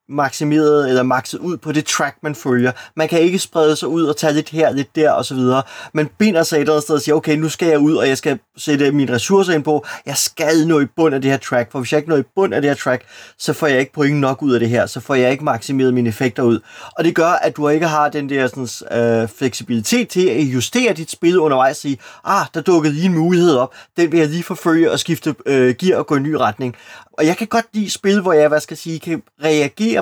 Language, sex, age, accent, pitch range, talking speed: Danish, male, 20-39, native, 135-170 Hz, 270 wpm